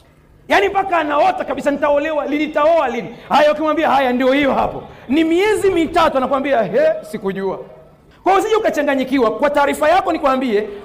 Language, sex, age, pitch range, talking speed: Swahili, male, 40-59, 240-315 Hz, 145 wpm